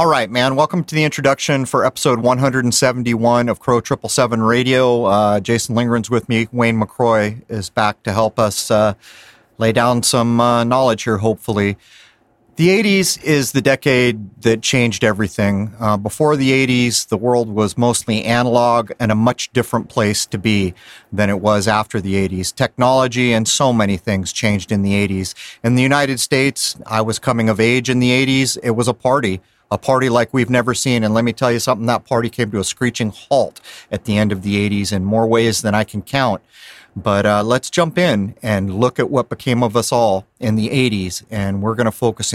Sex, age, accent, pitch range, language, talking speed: male, 30-49, American, 105-125 Hz, English, 200 wpm